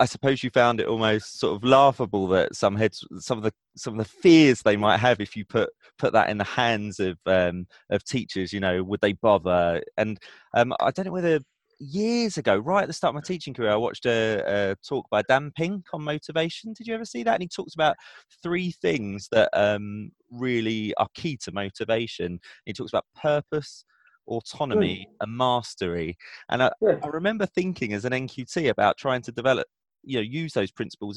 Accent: British